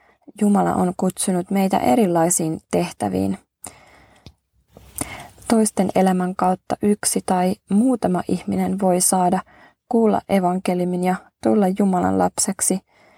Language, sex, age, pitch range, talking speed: Finnish, female, 20-39, 180-200 Hz, 95 wpm